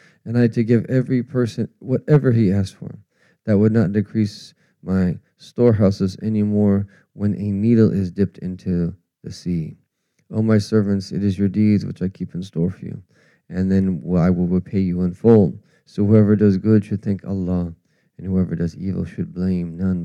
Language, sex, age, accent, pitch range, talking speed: English, male, 40-59, American, 90-105 Hz, 190 wpm